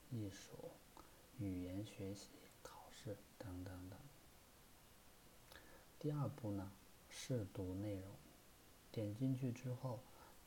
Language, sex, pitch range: Chinese, male, 100-120 Hz